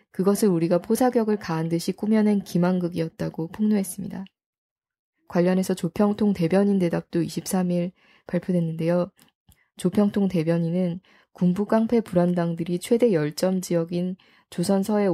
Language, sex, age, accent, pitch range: Korean, female, 20-39, native, 170-205 Hz